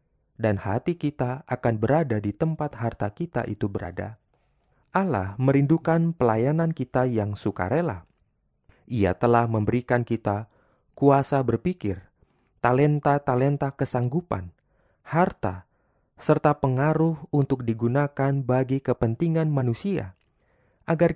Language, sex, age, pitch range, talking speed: Indonesian, male, 30-49, 110-145 Hz, 95 wpm